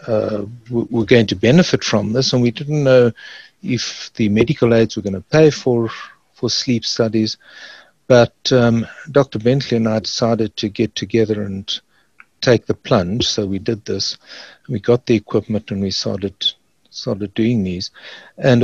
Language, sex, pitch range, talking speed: English, male, 105-120 Hz, 165 wpm